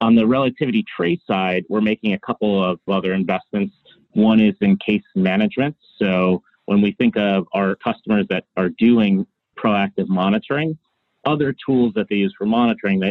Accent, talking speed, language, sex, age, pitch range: American, 165 wpm, English, male, 30-49, 95-120 Hz